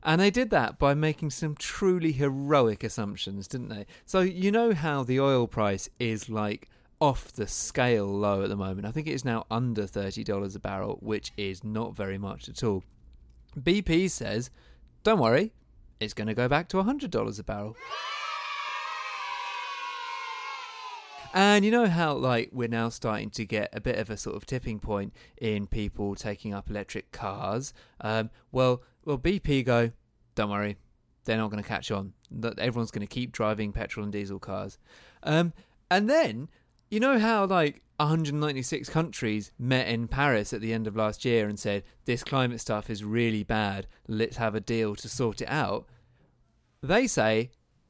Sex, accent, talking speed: male, British, 175 wpm